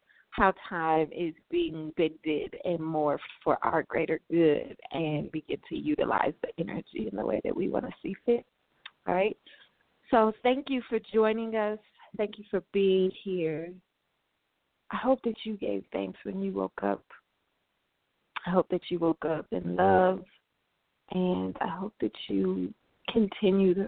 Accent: American